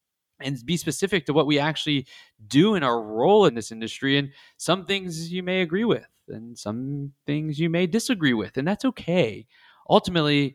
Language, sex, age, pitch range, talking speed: English, male, 20-39, 120-150 Hz, 180 wpm